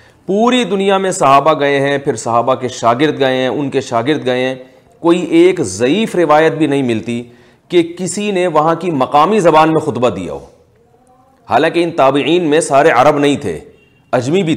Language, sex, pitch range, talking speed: Urdu, male, 130-175 Hz, 185 wpm